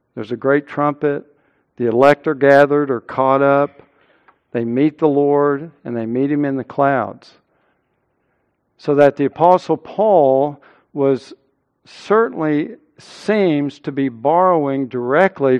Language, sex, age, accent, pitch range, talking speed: English, male, 60-79, American, 130-155 Hz, 130 wpm